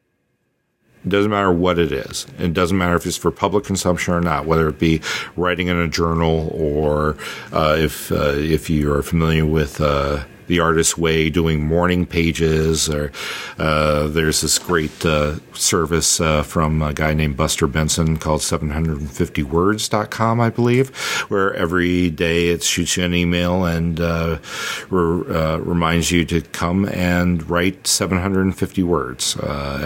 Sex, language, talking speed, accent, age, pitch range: male, English, 155 wpm, American, 50-69, 75-95 Hz